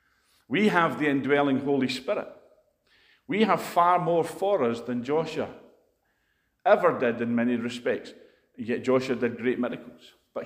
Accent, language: British, English